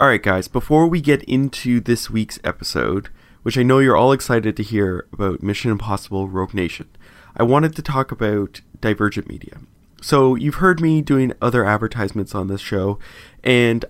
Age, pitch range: 30-49, 105-130 Hz